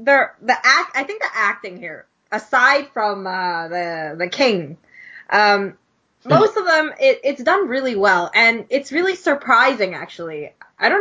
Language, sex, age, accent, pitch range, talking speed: English, female, 20-39, American, 185-260 Hz, 165 wpm